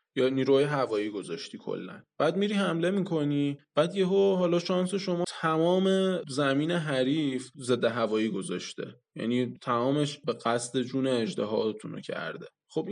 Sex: male